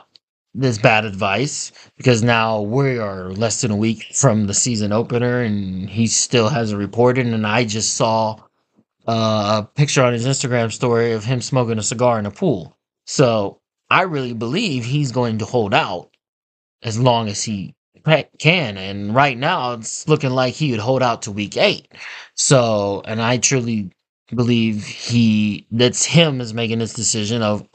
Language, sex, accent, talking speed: English, male, American, 170 wpm